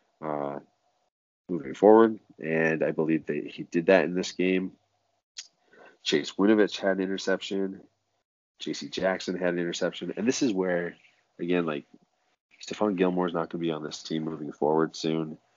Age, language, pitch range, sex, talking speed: 30-49, English, 80-90 Hz, male, 160 wpm